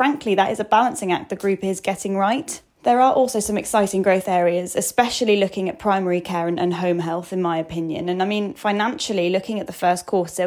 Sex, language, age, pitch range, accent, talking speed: female, English, 10-29, 170-210 Hz, British, 225 wpm